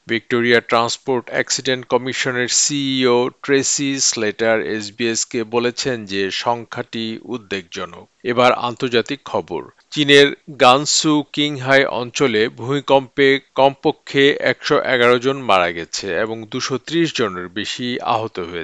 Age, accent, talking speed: 50-69, native, 50 wpm